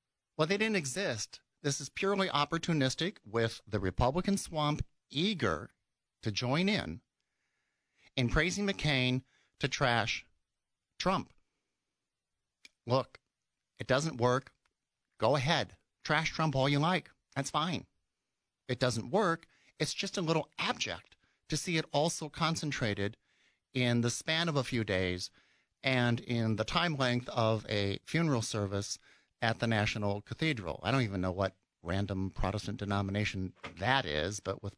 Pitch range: 105-150 Hz